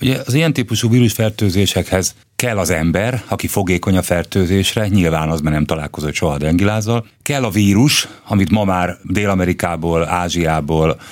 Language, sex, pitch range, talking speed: Hungarian, male, 90-115 Hz, 145 wpm